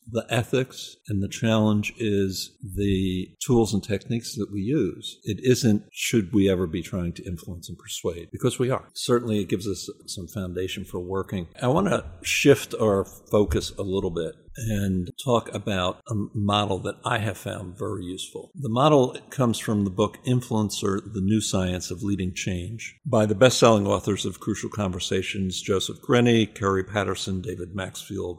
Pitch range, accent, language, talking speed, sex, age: 95-115 Hz, American, English, 170 wpm, male, 50-69